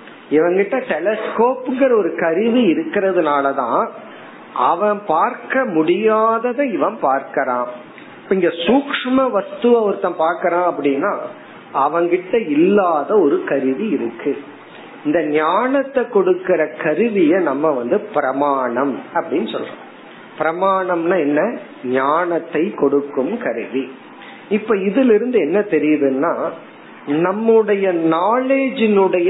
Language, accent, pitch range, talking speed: Tamil, native, 165-250 Hz, 70 wpm